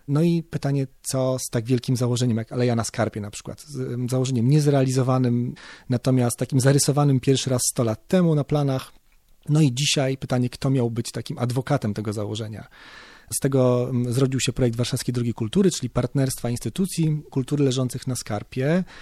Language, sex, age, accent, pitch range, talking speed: Polish, male, 40-59, native, 120-145 Hz, 165 wpm